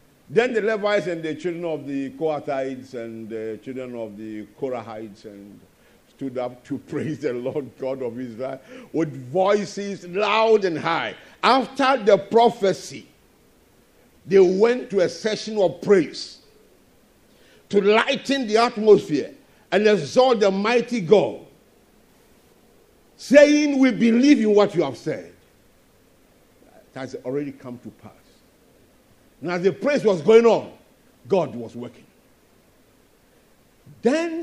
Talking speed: 130 wpm